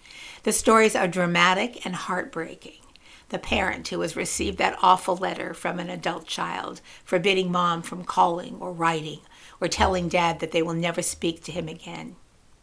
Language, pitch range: English, 165-185 Hz